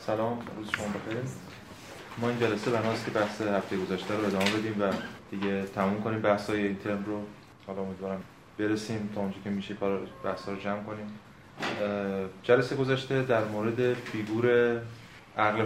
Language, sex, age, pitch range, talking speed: Persian, male, 20-39, 100-115 Hz, 160 wpm